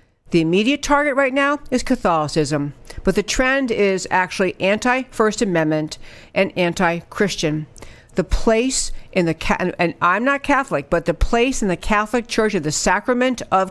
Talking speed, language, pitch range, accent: 155 wpm, English, 160-220 Hz, American